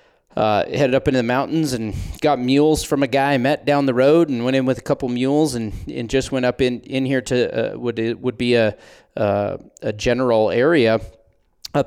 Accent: American